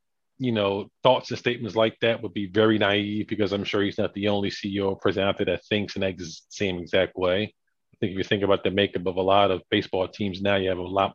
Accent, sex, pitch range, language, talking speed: American, male, 100-120 Hz, English, 255 wpm